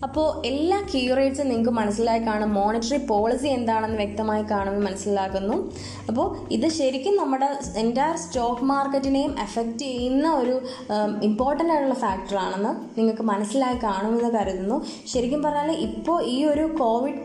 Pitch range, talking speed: 210-255 Hz, 120 wpm